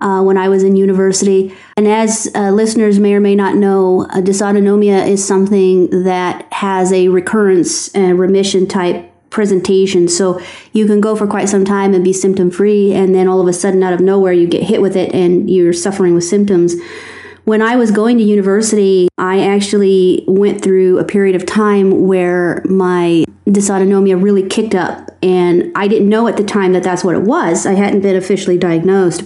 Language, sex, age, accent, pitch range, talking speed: English, female, 30-49, American, 185-210 Hz, 195 wpm